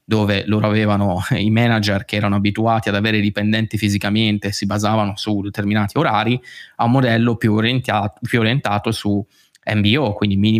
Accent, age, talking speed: native, 20-39, 155 wpm